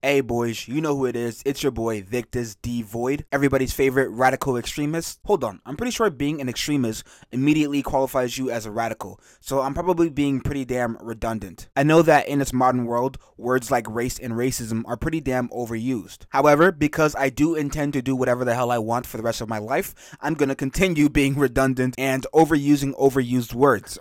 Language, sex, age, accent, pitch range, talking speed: English, male, 20-39, American, 120-145 Hz, 200 wpm